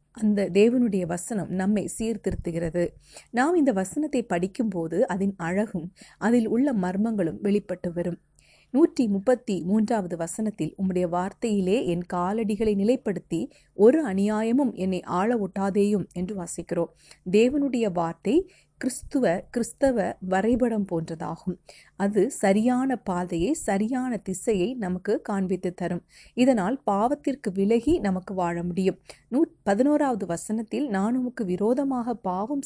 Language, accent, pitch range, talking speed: Tamil, native, 180-235 Hz, 105 wpm